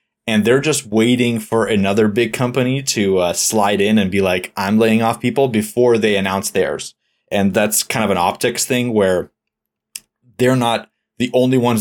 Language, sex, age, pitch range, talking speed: English, male, 20-39, 100-120 Hz, 185 wpm